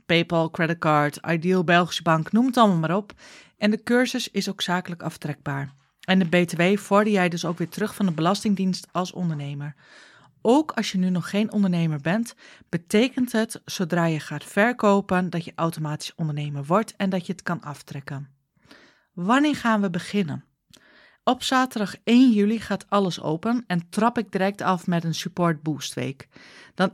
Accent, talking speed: Dutch, 175 wpm